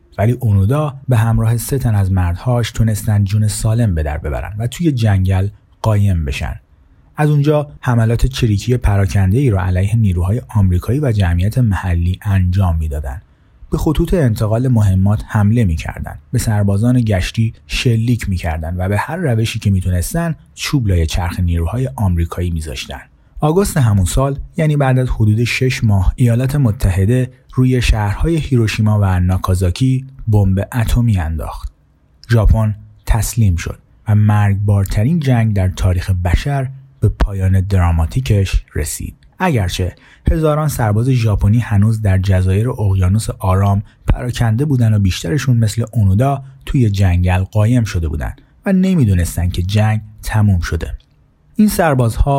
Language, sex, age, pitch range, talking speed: Persian, male, 30-49, 95-125 Hz, 135 wpm